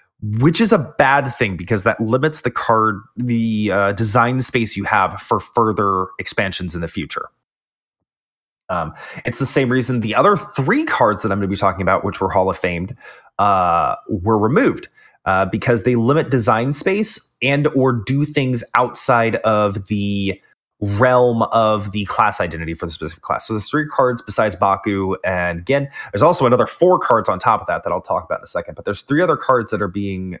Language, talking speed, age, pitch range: English, 195 wpm, 30-49, 100-130 Hz